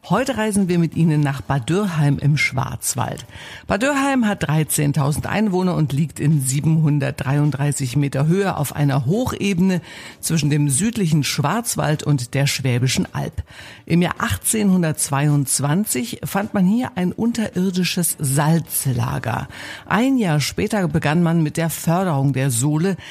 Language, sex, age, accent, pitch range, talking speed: German, female, 60-79, German, 140-185 Hz, 125 wpm